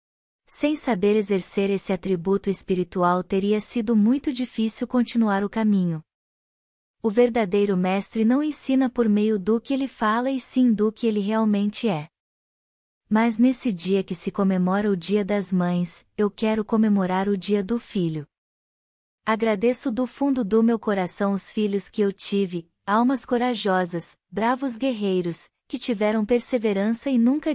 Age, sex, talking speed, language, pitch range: 20-39, female, 150 wpm, Portuguese, 190-235 Hz